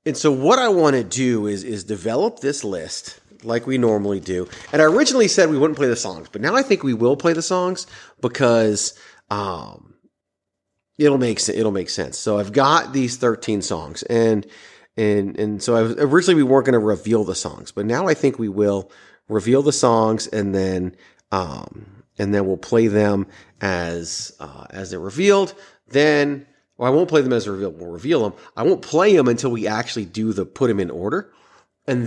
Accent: American